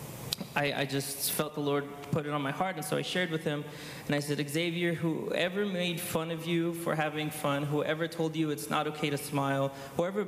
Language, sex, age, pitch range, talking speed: English, male, 20-39, 140-165 Hz, 220 wpm